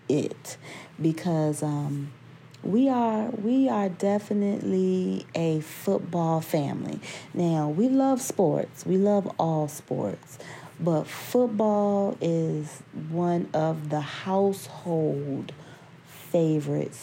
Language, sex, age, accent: English, female, 30-49, American